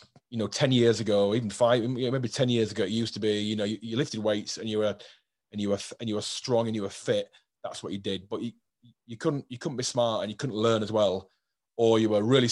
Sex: male